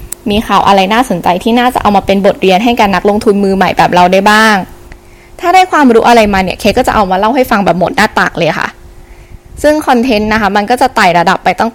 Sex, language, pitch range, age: female, Thai, 195-245 Hz, 10-29